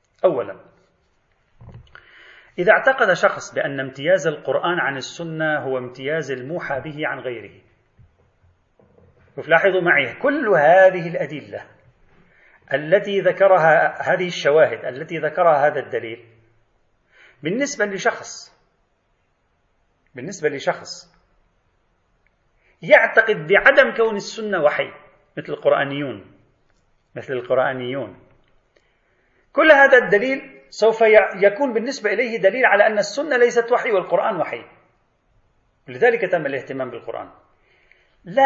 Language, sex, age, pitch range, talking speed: Arabic, male, 40-59, 125-200 Hz, 95 wpm